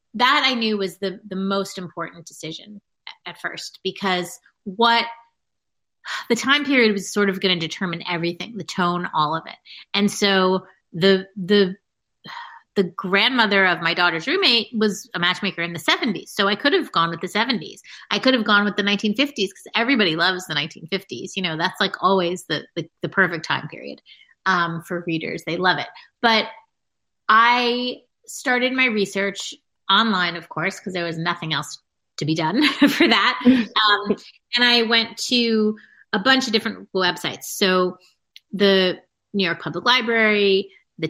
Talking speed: 170 wpm